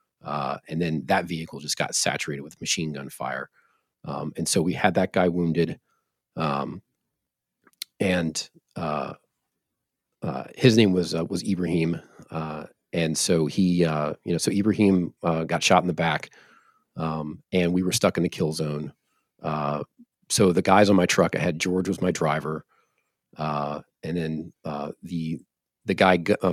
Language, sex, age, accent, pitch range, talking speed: English, male, 40-59, American, 75-90 Hz, 170 wpm